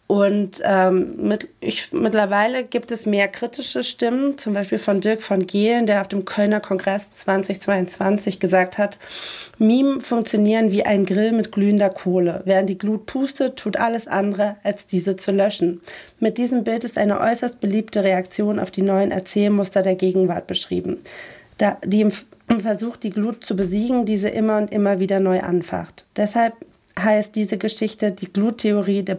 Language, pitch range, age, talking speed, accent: German, 185-210 Hz, 40-59, 160 wpm, German